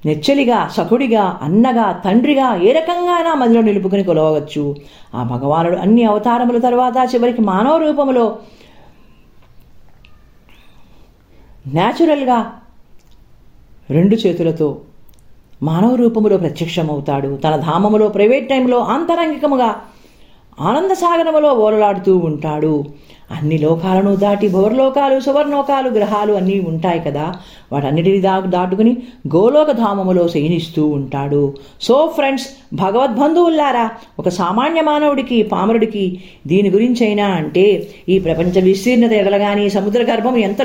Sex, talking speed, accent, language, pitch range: female, 95 wpm, native, Telugu, 165-235 Hz